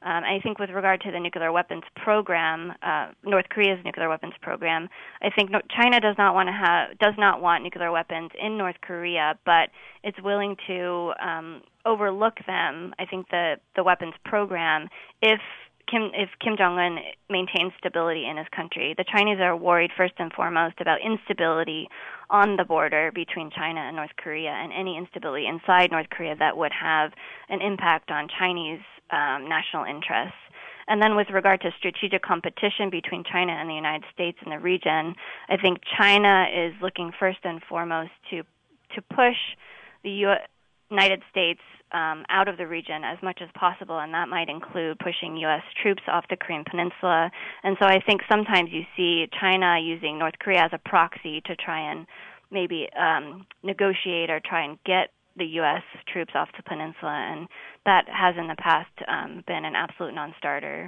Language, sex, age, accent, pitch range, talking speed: English, female, 20-39, American, 165-195 Hz, 175 wpm